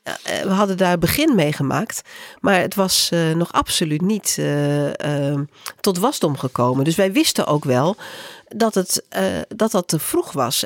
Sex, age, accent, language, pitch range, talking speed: female, 40-59, Dutch, Dutch, 145-210 Hz, 175 wpm